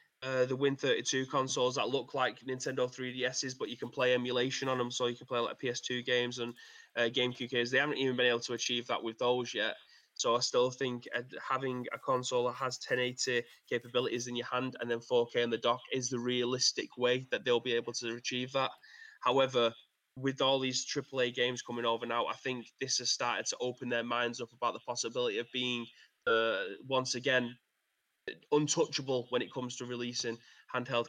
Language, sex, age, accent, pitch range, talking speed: English, male, 20-39, British, 120-130 Hz, 200 wpm